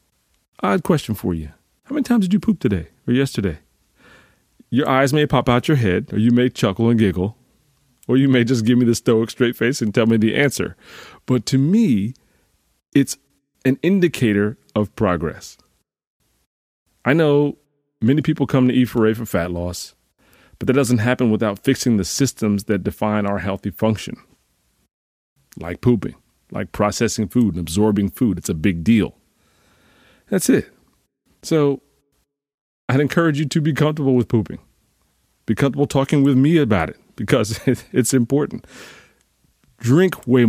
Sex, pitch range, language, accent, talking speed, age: male, 100-140 Hz, English, American, 160 wpm, 30-49